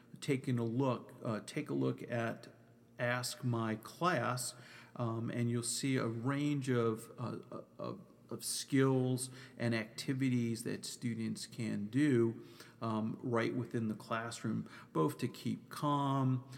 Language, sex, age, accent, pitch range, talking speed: English, male, 50-69, American, 115-130 Hz, 135 wpm